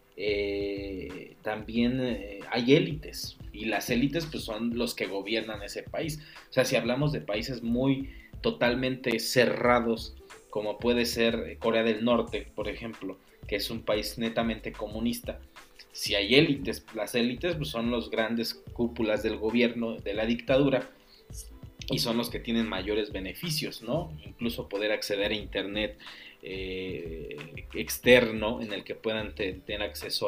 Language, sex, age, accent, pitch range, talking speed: Spanish, male, 30-49, Mexican, 105-120 Hz, 150 wpm